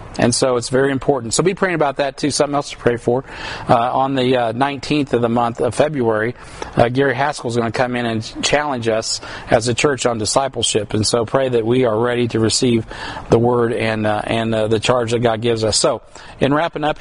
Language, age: English, 50-69